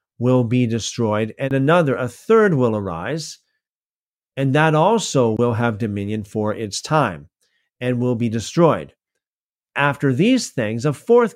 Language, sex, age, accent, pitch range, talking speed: English, male, 50-69, American, 120-165 Hz, 145 wpm